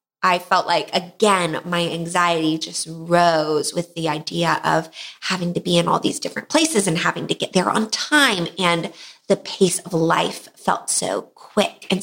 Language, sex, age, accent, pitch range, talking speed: English, female, 20-39, American, 170-205 Hz, 180 wpm